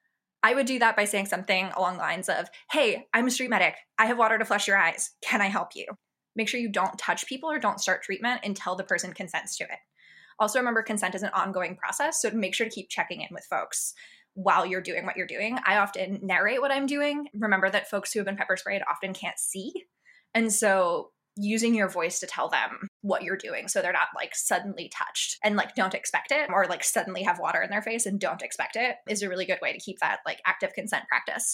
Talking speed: 245 wpm